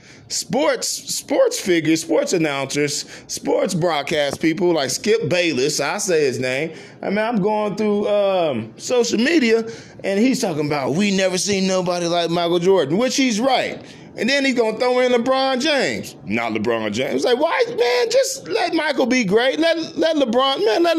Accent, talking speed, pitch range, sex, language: American, 175 wpm, 165-250 Hz, male, English